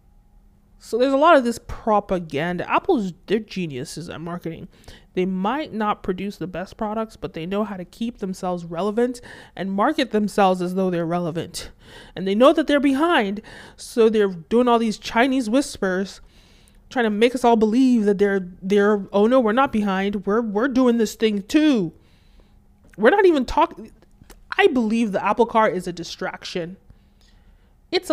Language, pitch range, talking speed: English, 190-250 Hz, 175 wpm